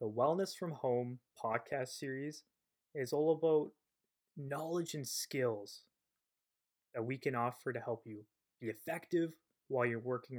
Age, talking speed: 20-39, 140 wpm